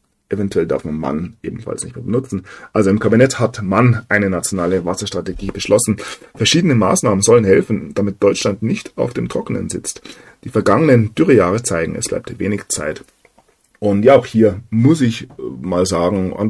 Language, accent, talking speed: German, German, 165 wpm